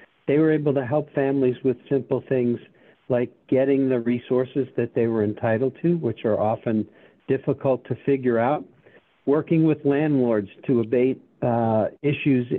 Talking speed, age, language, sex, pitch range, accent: 155 wpm, 60-79, English, male, 120-145 Hz, American